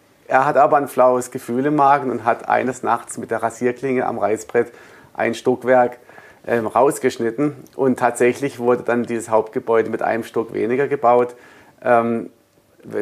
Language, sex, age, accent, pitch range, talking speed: German, male, 40-59, German, 115-130 Hz, 150 wpm